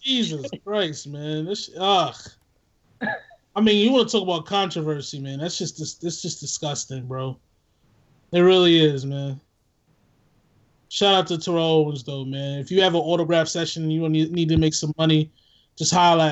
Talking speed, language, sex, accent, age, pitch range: 175 wpm, English, male, American, 20-39, 150-190 Hz